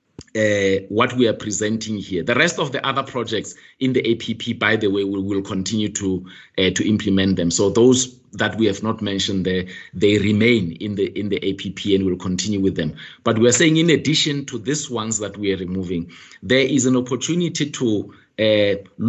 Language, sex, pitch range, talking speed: English, male, 95-125 Hz, 200 wpm